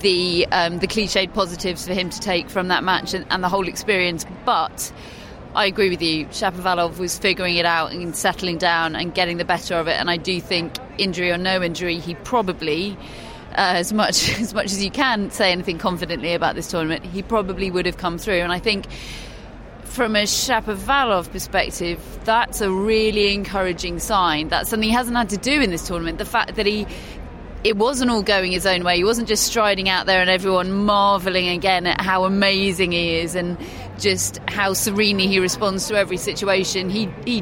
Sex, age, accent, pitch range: female, 30-49, British, 180-215 Hz